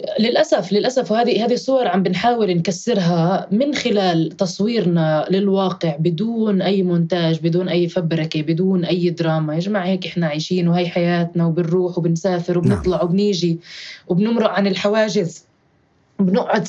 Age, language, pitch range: 20-39, Arabic, 180-210 Hz